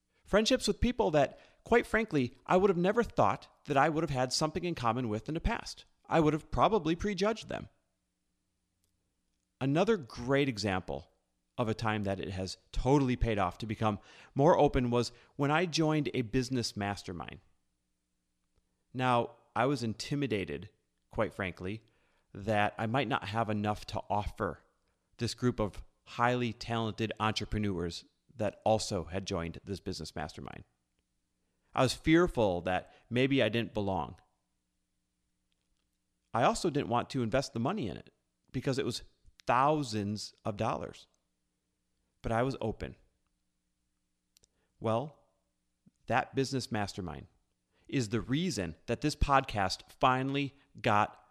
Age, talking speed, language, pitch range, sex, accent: 30-49, 140 wpm, English, 85-135 Hz, male, American